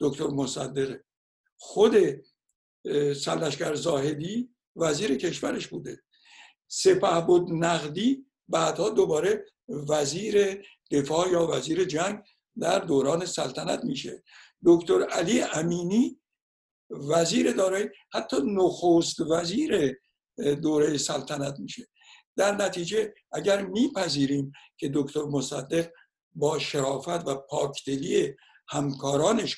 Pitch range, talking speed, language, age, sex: 140-200 Hz, 90 wpm, Persian, 60-79, male